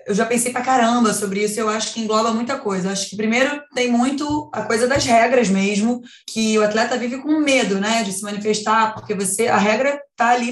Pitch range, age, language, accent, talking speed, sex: 205-250 Hz, 20-39, Portuguese, Brazilian, 225 wpm, female